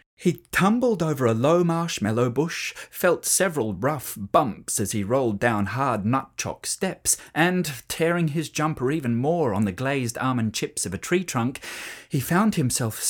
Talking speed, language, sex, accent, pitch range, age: 165 wpm, English, male, British, 120-190 Hz, 30-49